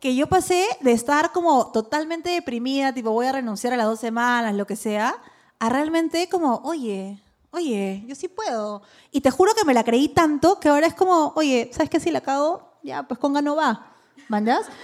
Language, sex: Spanish, female